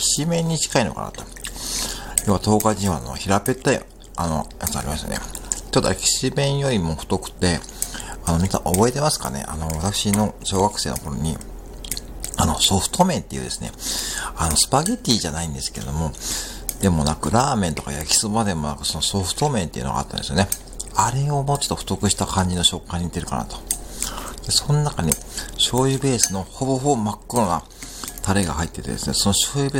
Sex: male